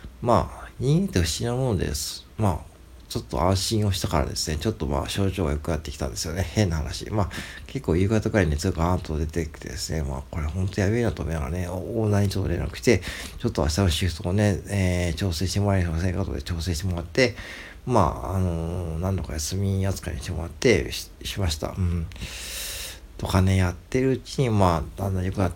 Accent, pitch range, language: native, 80-105 Hz, Japanese